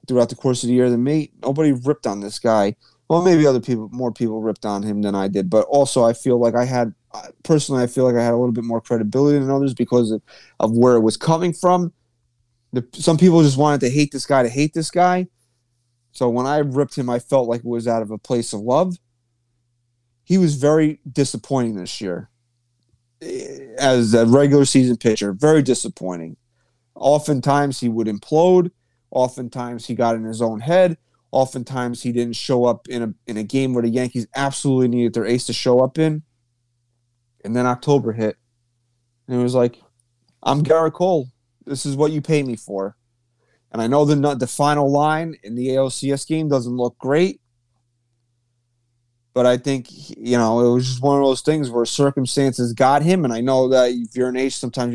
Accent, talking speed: American, 200 wpm